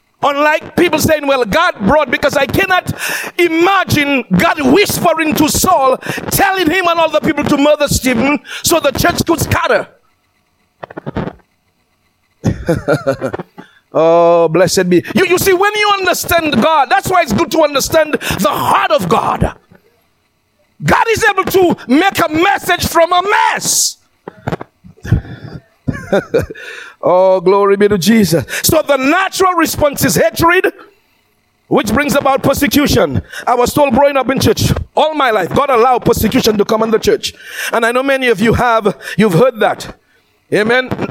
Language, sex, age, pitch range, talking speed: English, male, 50-69, 225-340 Hz, 150 wpm